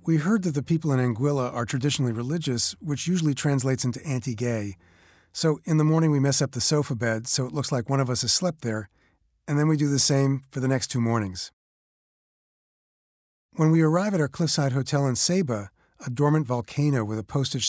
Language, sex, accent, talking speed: English, male, American, 205 wpm